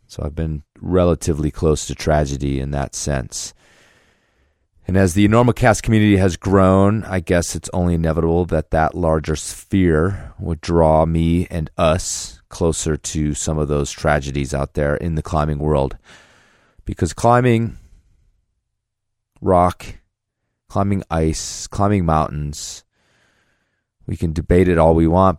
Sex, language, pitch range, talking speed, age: male, English, 75-100 Hz, 135 wpm, 30-49